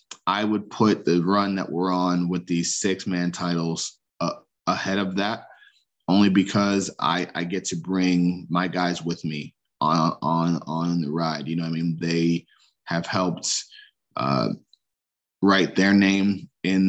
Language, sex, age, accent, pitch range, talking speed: English, male, 20-39, American, 85-95 Hz, 165 wpm